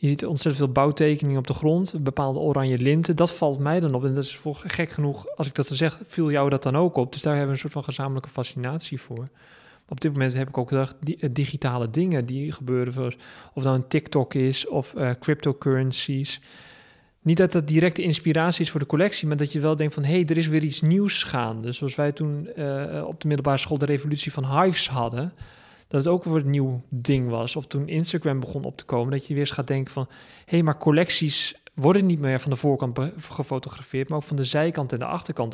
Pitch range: 135-155 Hz